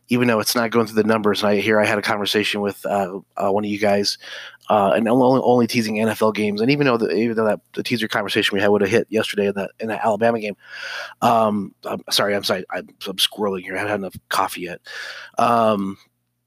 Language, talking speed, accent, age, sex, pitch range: English, 245 wpm, American, 30-49, male, 95-110 Hz